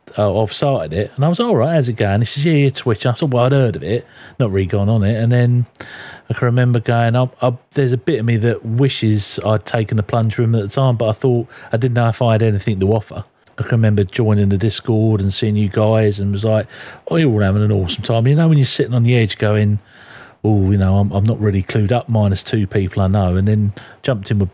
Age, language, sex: 40-59, English, male